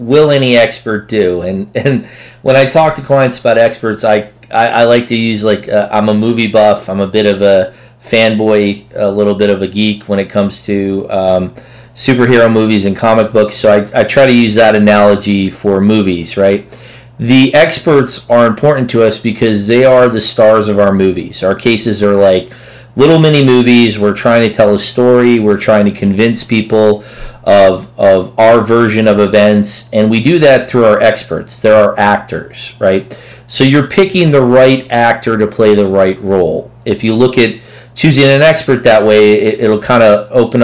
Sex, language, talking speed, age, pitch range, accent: male, English, 195 wpm, 30-49, 105-125 Hz, American